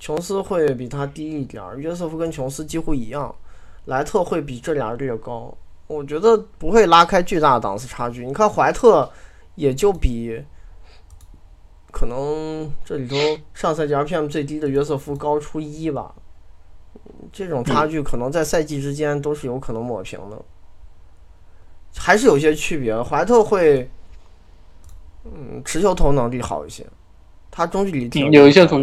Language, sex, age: Chinese, male, 20-39